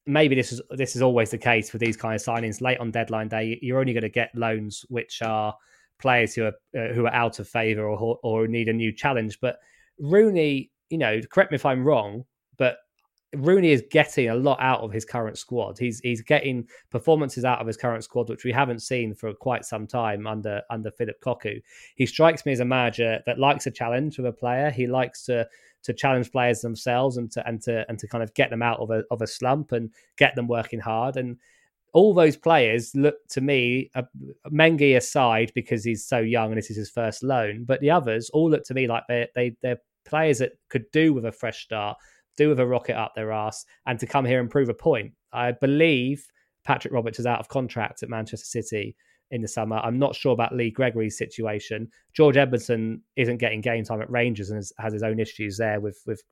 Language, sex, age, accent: English, male, 20-39, British